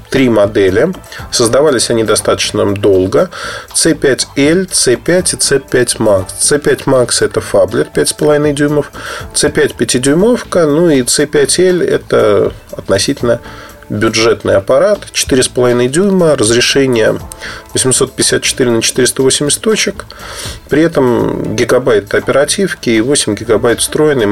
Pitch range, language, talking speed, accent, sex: 110-150 Hz, Russian, 100 wpm, native, male